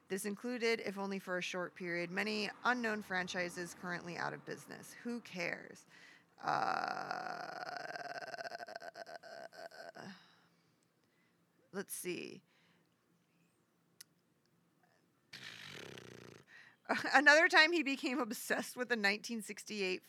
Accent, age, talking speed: American, 40-59, 85 wpm